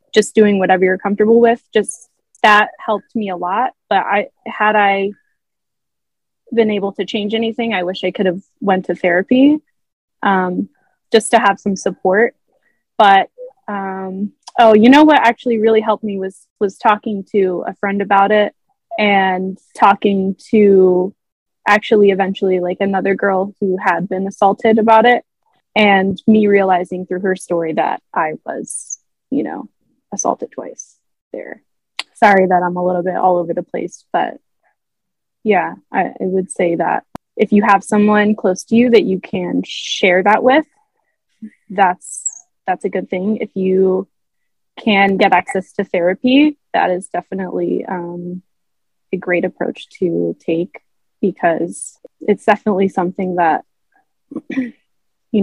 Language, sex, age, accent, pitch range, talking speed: English, female, 20-39, American, 185-225 Hz, 150 wpm